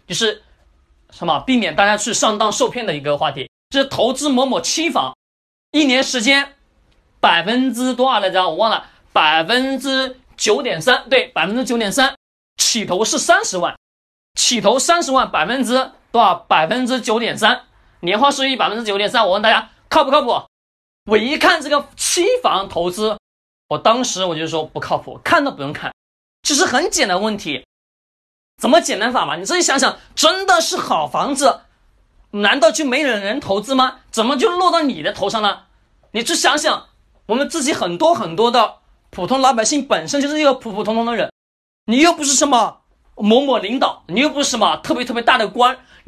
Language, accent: Chinese, native